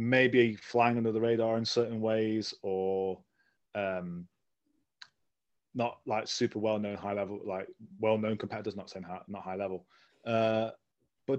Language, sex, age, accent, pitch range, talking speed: English, male, 30-49, British, 100-120 Hz, 140 wpm